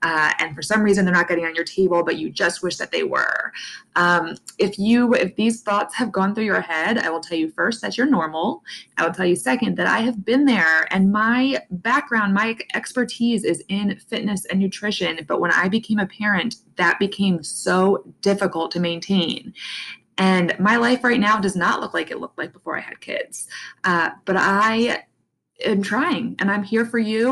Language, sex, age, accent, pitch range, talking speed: English, female, 20-39, American, 175-225 Hz, 210 wpm